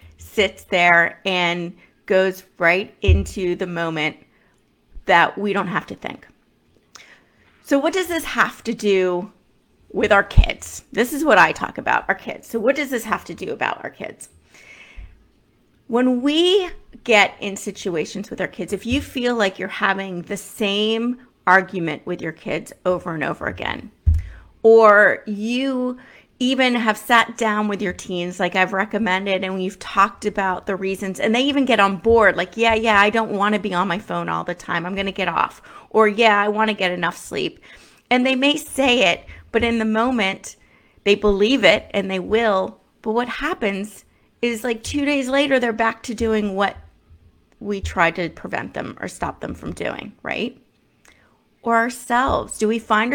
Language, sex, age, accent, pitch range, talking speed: English, female, 30-49, American, 185-230 Hz, 180 wpm